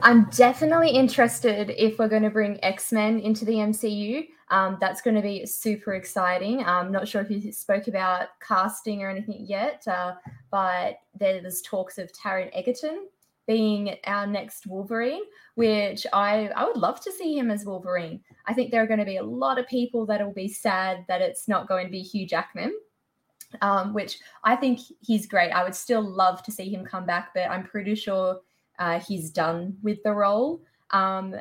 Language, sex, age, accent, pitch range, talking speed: English, female, 20-39, Australian, 185-230 Hz, 195 wpm